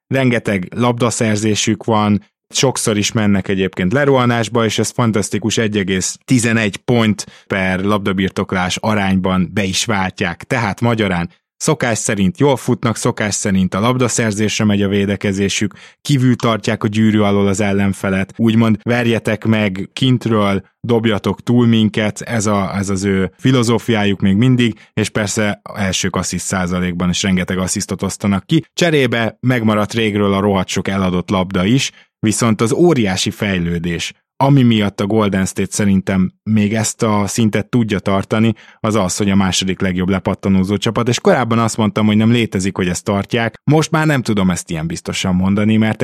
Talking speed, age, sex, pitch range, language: 150 wpm, 20-39, male, 95-115 Hz, Hungarian